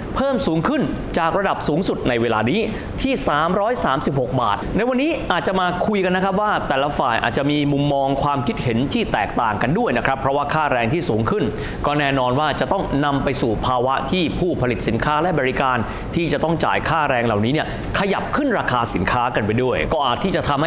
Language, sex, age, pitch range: Thai, male, 20-39, 125-180 Hz